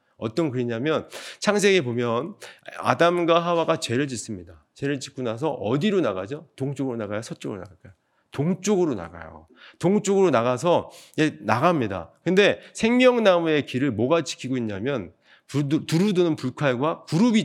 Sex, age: male, 30-49